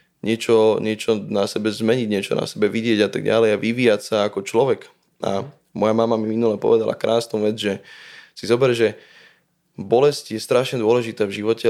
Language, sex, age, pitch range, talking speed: English, male, 20-39, 105-130 Hz, 180 wpm